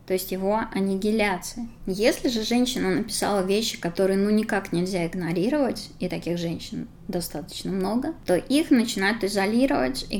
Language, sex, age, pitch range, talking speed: Russian, female, 20-39, 190-235 Hz, 140 wpm